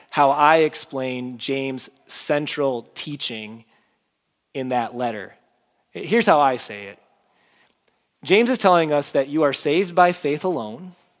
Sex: male